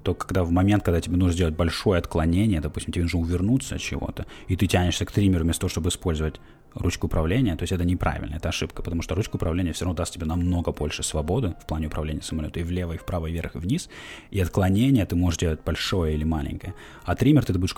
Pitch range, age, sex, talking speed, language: 80-100 Hz, 20-39, male, 230 wpm, Russian